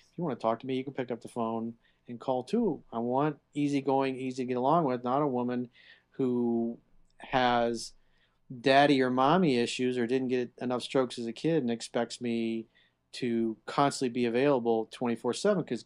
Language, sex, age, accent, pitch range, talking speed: English, male, 40-59, American, 115-135 Hz, 195 wpm